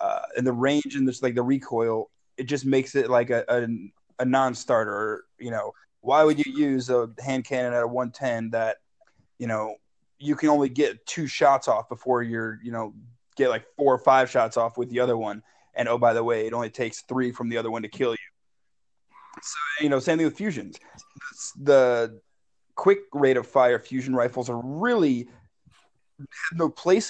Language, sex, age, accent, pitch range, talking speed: English, male, 20-39, American, 120-155 Hz, 200 wpm